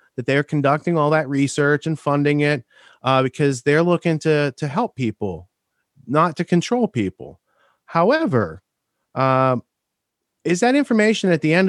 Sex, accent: male, American